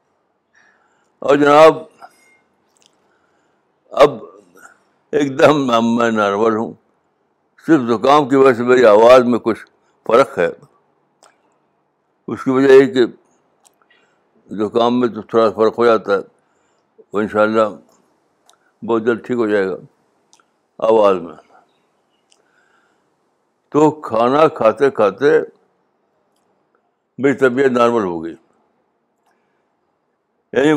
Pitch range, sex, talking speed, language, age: 115-140 Hz, male, 100 wpm, Urdu, 60-79